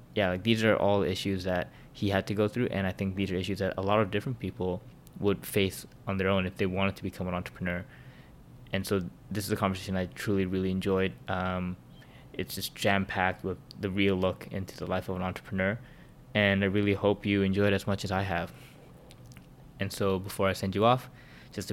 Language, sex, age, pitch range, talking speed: English, male, 20-39, 95-105 Hz, 220 wpm